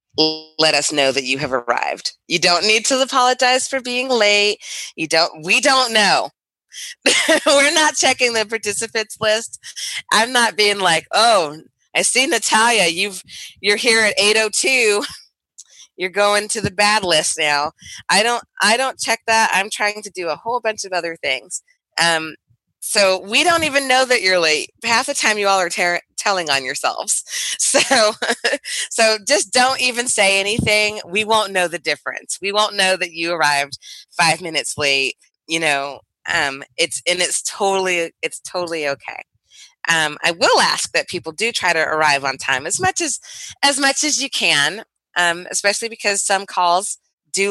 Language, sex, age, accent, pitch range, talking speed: English, female, 20-39, American, 165-225 Hz, 175 wpm